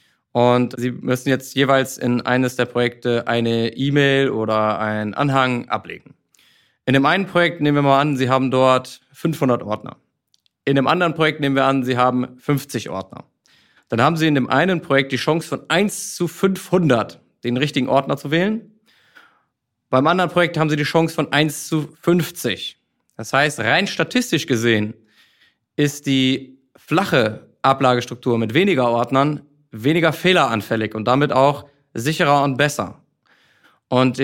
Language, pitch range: German, 125-155 Hz